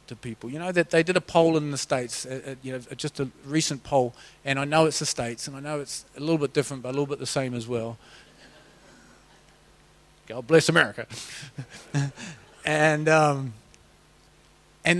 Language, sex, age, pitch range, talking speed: English, male, 30-49, 120-160 Hz, 185 wpm